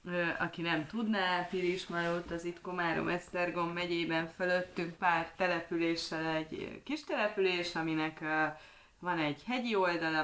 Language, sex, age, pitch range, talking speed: Hungarian, female, 30-49, 160-195 Hz, 115 wpm